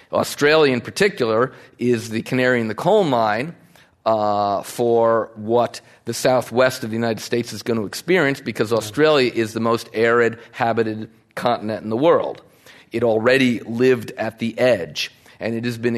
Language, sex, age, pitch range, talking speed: English, male, 40-59, 105-120 Hz, 165 wpm